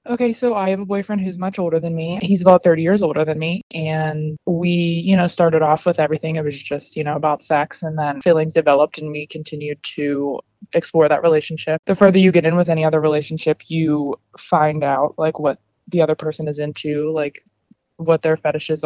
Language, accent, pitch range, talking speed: English, American, 150-175 Hz, 215 wpm